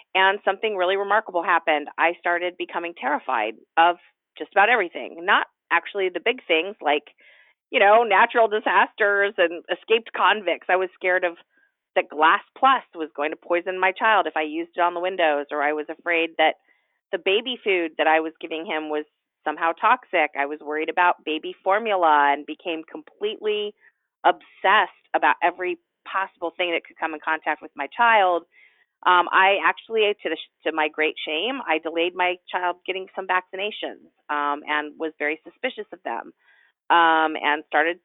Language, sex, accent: English, female, American